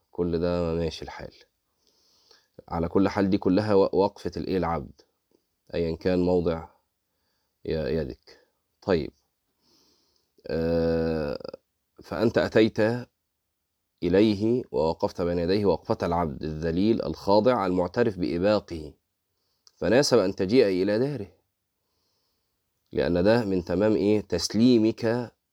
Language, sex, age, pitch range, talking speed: Arabic, male, 30-49, 85-105 Hz, 95 wpm